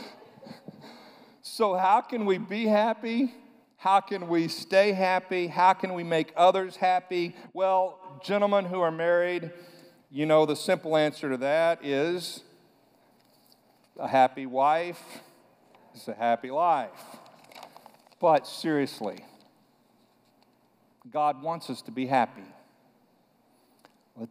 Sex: male